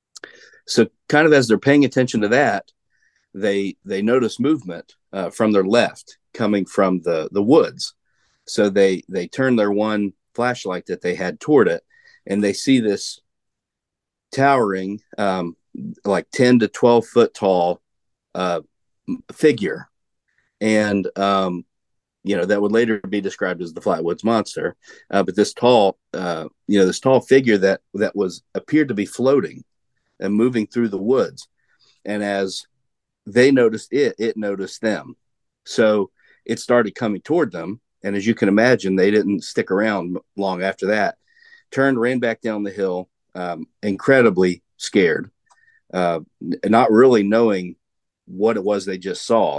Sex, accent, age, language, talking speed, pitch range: male, American, 40-59, English, 155 wpm, 95-120 Hz